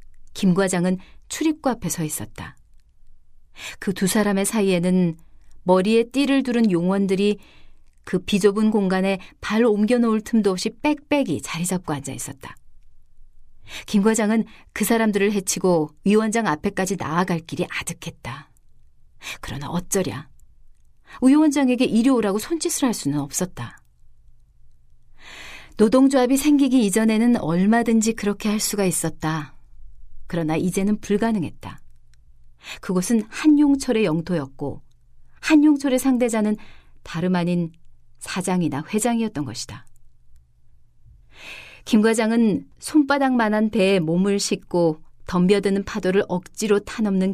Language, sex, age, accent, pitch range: Korean, female, 40-59, native, 155-220 Hz